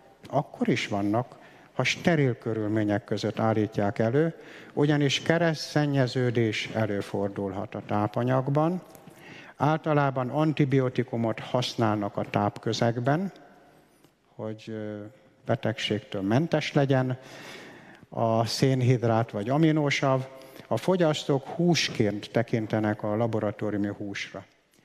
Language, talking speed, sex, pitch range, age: Hungarian, 80 wpm, male, 110-140 Hz, 60-79